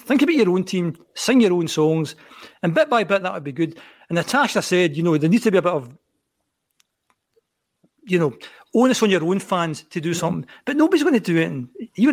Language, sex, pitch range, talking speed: English, male, 155-210 Hz, 230 wpm